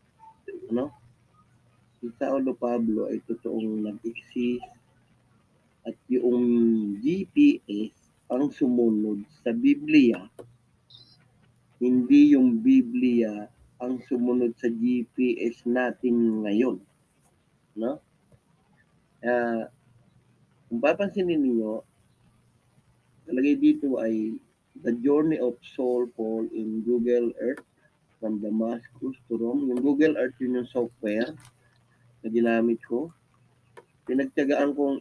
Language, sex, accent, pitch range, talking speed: English, male, Filipino, 115-135 Hz, 85 wpm